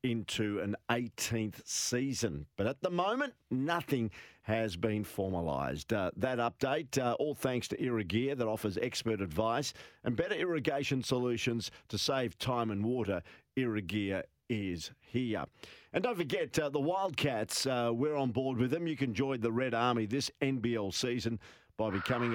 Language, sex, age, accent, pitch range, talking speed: English, male, 50-69, Australian, 110-140 Hz, 160 wpm